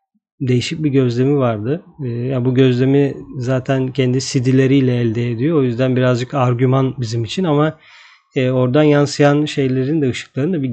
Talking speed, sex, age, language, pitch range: 145 wpm, male, 40-59, Turkish, 125-150 Hz